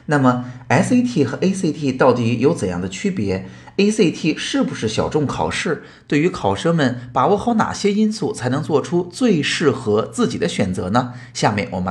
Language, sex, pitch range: Chinese, male, 110-180 Hz